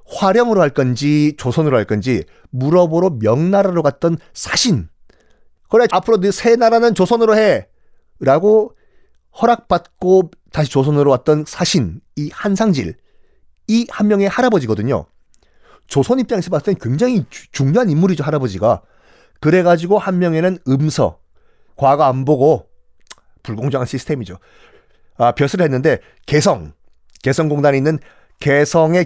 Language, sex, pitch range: Korean, male, 125-185 Hz